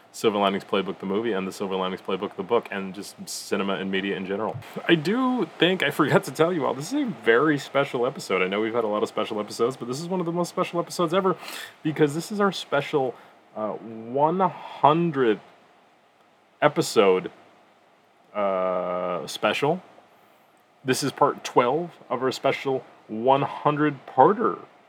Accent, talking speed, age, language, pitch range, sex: American, 170 wpm, 30-49, English, 110-165 Hz, male